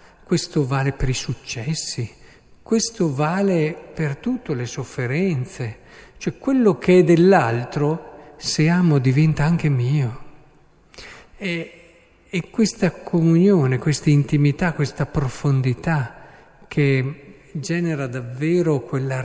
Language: Italian